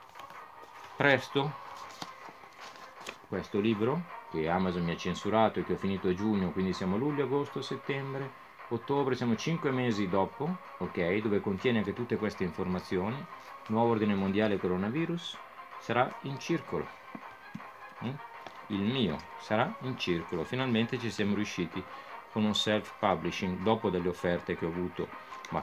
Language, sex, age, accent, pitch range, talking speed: Italian, male, 40-59, native, 90-130 Hz, 135 wpm